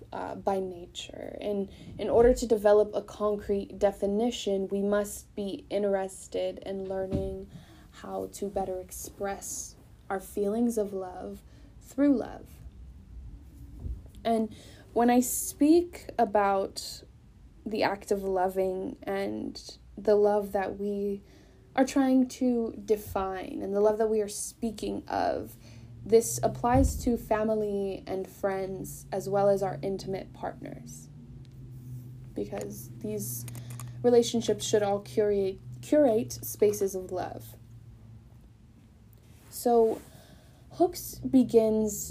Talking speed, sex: 110 wpm, female